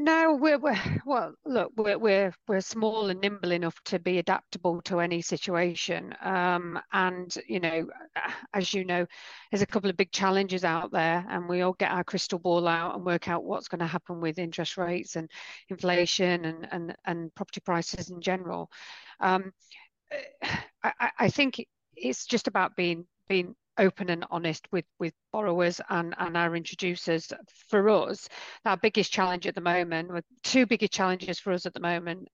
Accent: British